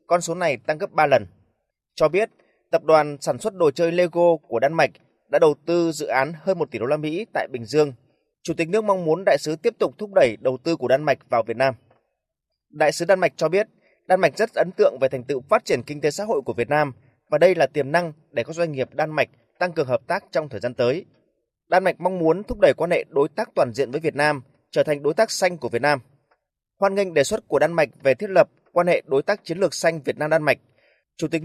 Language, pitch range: Vietnamese, 145-190 Hz